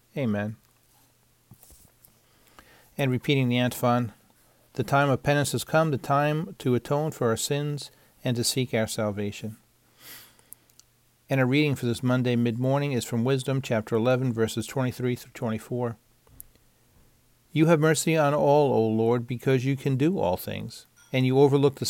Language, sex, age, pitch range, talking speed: English, male, 50-69, 115-135 Hz, 155 wpm